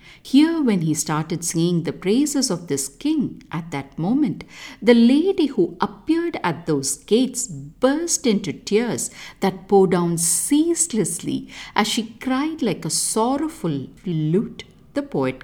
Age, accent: 50-69, Indian